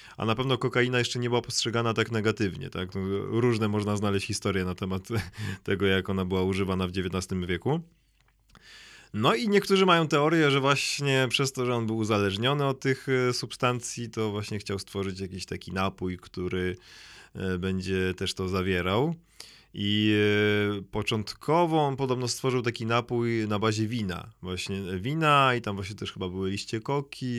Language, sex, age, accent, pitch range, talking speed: Polish, male, 20-39, native, 100-125 Hz, 160 wpm